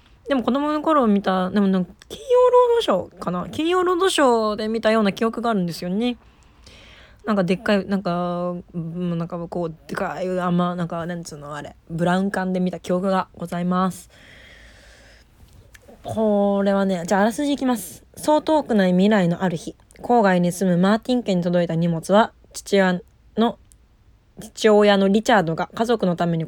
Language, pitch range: Japanese, 175-230 Hz